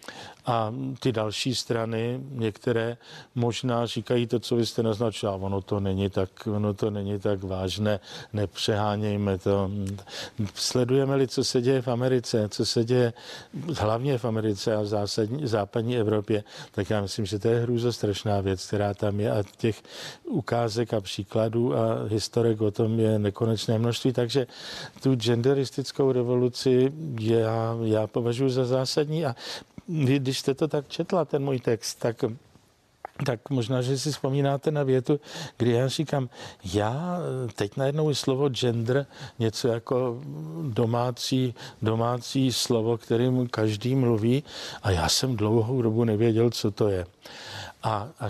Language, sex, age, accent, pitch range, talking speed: Czech, male, 50-69, native, 110-130 Hz, 145 wpm